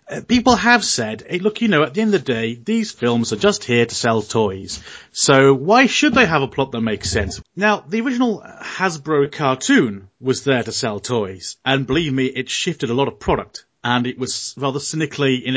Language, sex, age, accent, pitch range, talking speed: English, male, 30-49, British, 115-165 Hz, 215 wpm